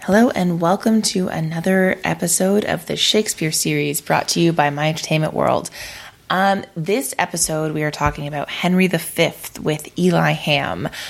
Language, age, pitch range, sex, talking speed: English, 20-39, 145-165 Hz, female, 155 wpm